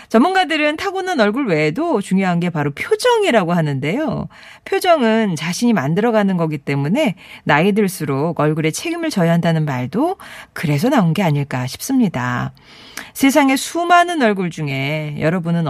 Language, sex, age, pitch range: Korean, female, 40-59, 170-280 Hz